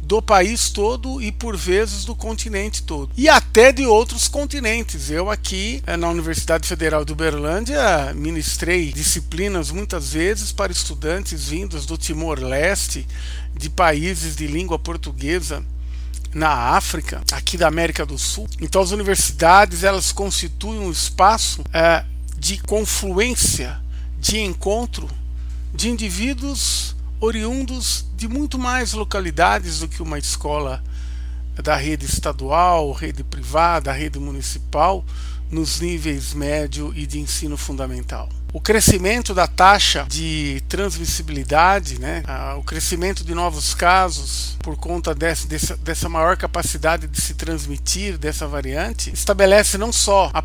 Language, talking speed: Portuguese, 125 wpm